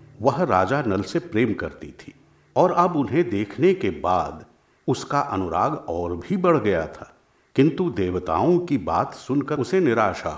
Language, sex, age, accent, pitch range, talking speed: Hindi, male, 50-69, native, 100-150 Hz, 155 wpm